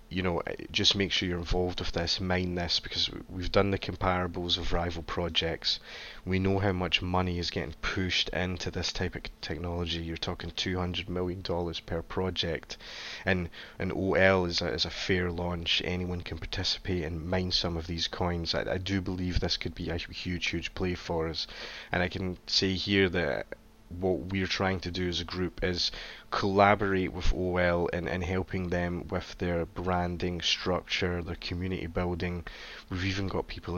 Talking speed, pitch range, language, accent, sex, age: 180 wpm, 85-95 Hz, English, British, male, 20-39